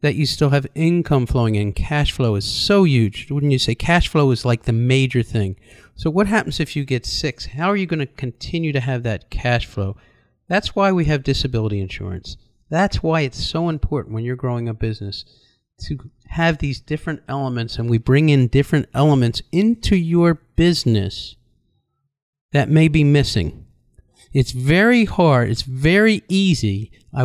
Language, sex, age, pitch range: English, male, 50-69, 115-160 Hz